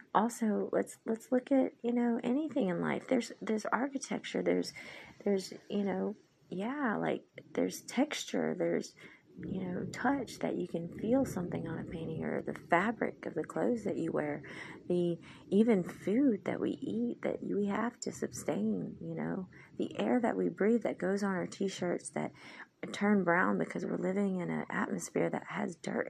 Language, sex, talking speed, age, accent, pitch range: English, female, 175 wpm, 30-49, American, 165-220 Hz